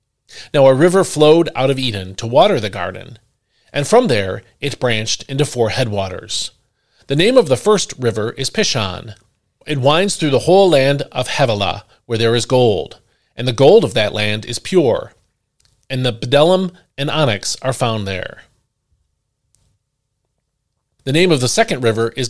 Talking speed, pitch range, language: 165 wpm, 110-150 Hz, English